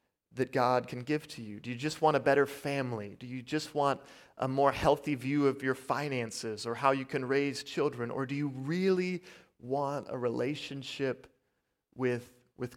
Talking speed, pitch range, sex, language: 185 wpm, 125-150 Hz, male, English